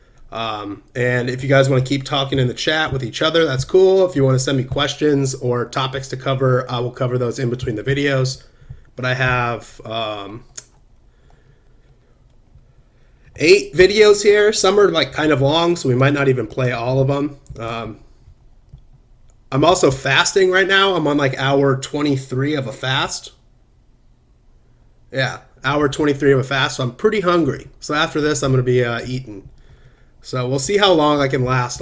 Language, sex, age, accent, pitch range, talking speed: English, male, 30-49, American, 125-150 Hz, 185 wpm